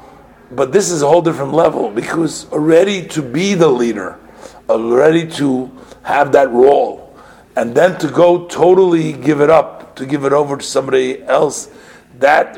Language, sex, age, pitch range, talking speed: English, male, 50-69, 110-160 Hz, 160 wpm